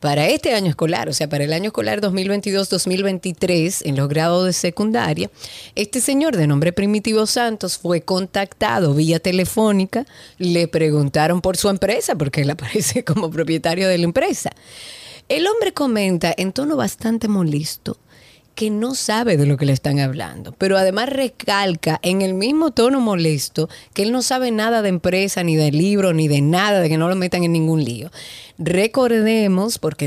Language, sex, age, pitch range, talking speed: Spanish, female, 30-49, 160-210 Hz, 170 wpm